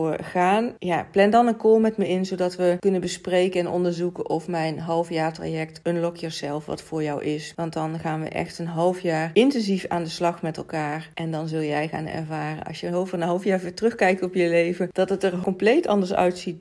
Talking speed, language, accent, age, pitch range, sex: 220 wpm, Dutch, Dutch, 40-59, 160-185 Hz, female